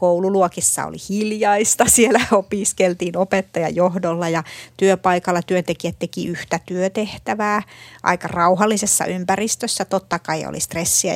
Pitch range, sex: 170-205 Hz, female